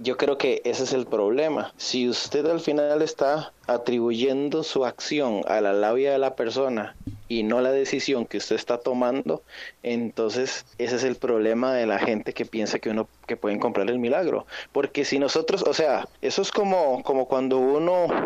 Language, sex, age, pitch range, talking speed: Spanish, male, 20-39, 115-145 Hz, 185 wpm